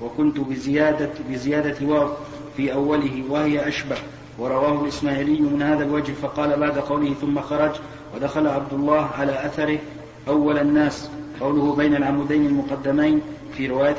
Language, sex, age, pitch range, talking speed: Arabic, male, 40-59, 145-150 Hz, 135 wpm